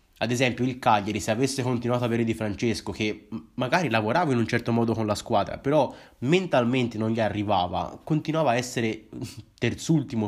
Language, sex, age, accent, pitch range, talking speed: Italian, male, 20-39, native, 110-130 Hz, 175 wpm